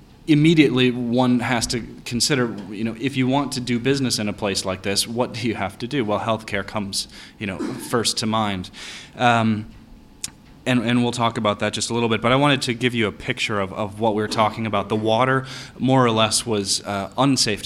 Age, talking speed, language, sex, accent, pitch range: 20-39, 225 wpm, Italian, male, American, 100-125 Hz